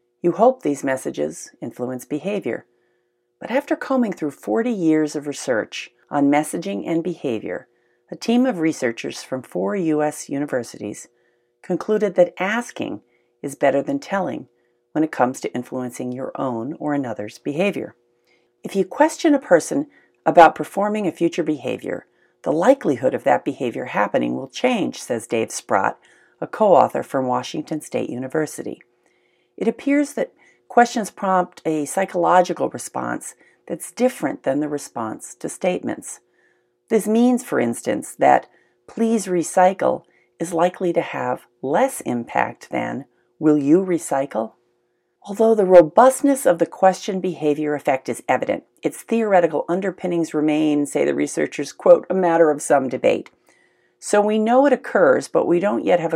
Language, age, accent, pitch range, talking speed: English, 50-69, American, 130-200 Hz, 145 wpm